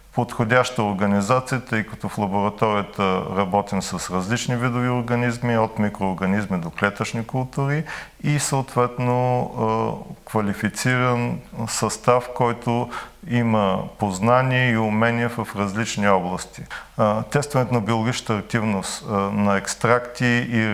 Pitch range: 105-125 Hz